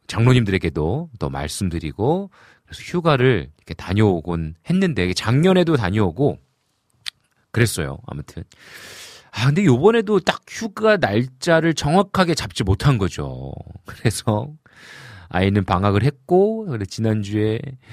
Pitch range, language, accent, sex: 90-130 Hz, Korean, native, male